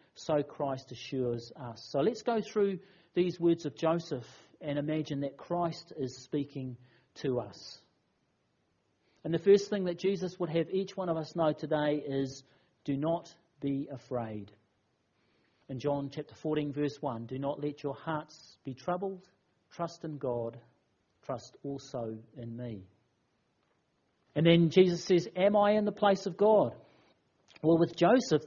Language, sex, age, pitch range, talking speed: English, male, 40-59, 130-180 Hz, 155 wpm